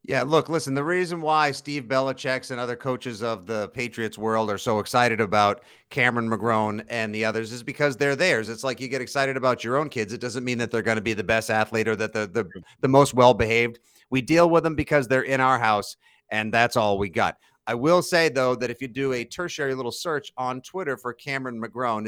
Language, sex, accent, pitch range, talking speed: English, male, American, 115-140 Hz, 235 wpm